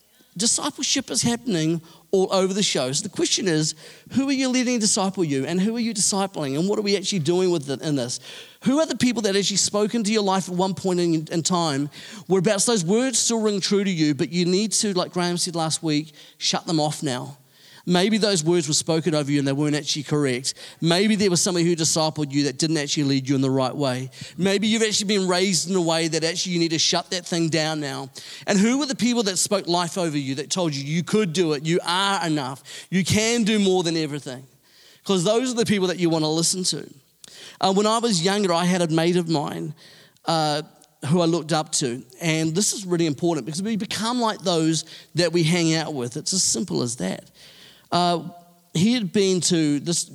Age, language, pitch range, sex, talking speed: 40-59, English, 150-190 Hz, male, 230 wpm